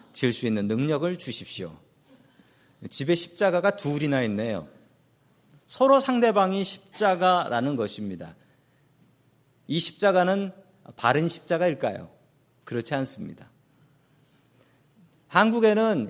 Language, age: Korean, 40-59